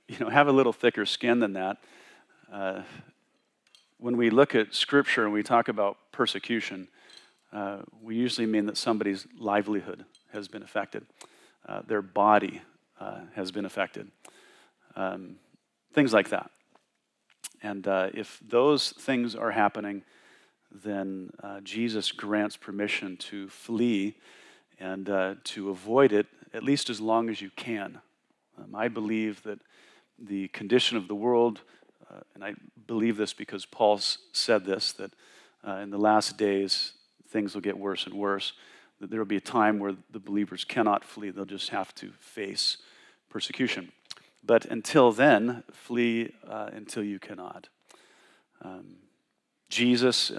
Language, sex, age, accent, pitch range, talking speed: English, male, 40-59, American, 100-115 Hz, 150 wpm